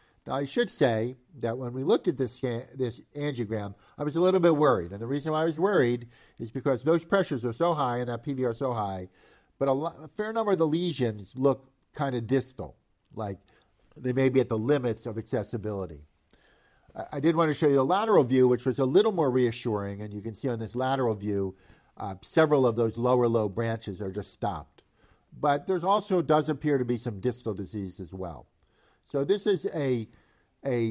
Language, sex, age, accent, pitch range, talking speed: English, male, 50-69, American, 100-145 Hz, 215 wpm